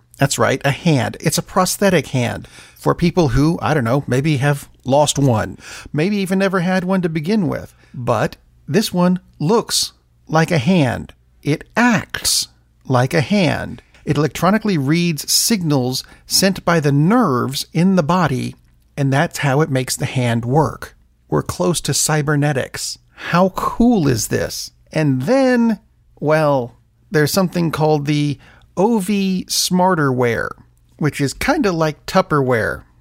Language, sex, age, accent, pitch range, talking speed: English, male, 40-59, American, 125-170 Hz, 145 wpm